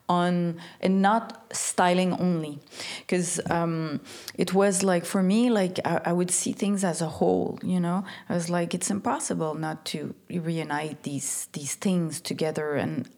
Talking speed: 165 wpm